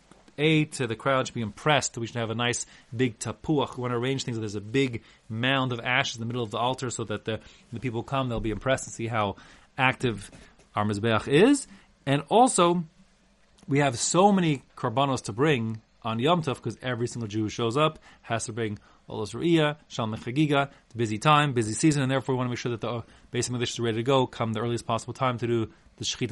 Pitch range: 115-155 Hz